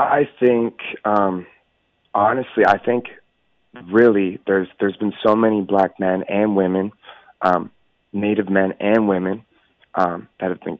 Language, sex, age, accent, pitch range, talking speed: English, male, 30-49, American, 90-105 Hz, 140 wpm